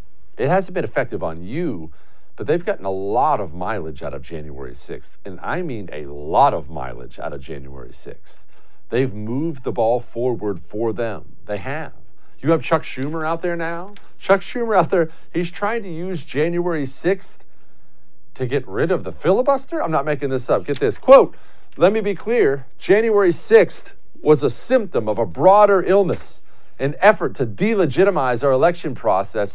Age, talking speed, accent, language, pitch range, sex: 50-69, 180 wpm, American, English, 120-185 Hz, male